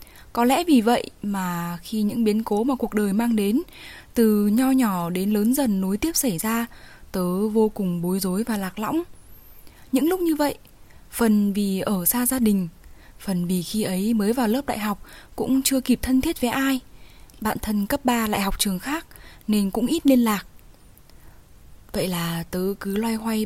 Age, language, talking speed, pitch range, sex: 10-29, Vietnamese, 195 wpm, 195-250 Hz, female